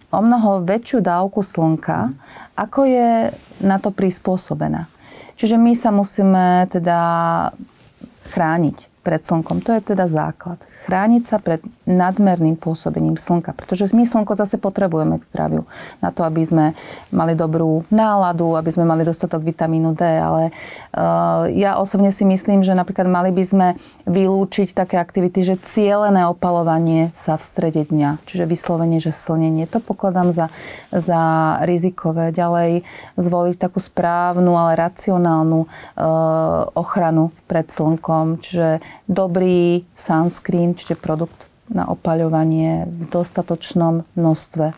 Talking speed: 130 wpm